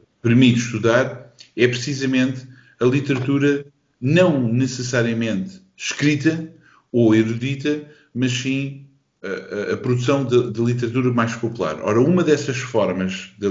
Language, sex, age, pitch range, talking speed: Portuguese, male, 50-69, 105-130 Hz, 115 wpm